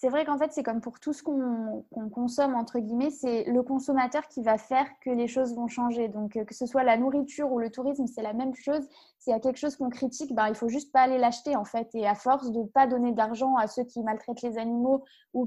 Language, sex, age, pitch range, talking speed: French, female, 20-39, 225-275 Hz, 270 wpm